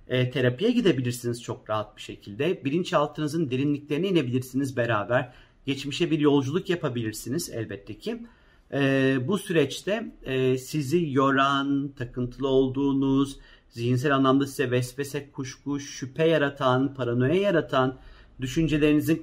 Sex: male